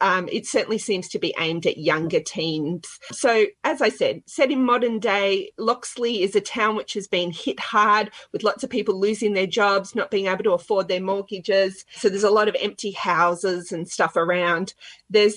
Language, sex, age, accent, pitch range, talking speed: English, female, 30-49, Australian, 180-235 Hz, 200 wpm